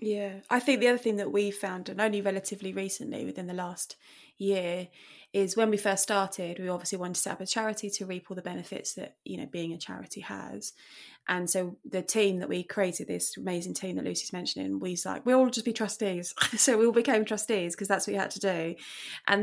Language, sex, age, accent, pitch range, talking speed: English, female, 20-39, British, 180-210 Hz, 235 wpm